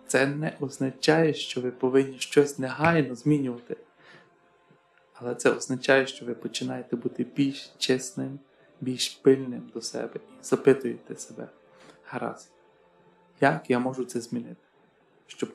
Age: 20-39